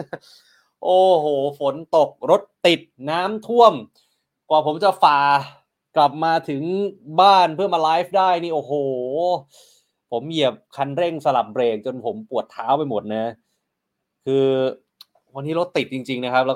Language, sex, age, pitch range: Thai, male, 20-39, 135-185 Hz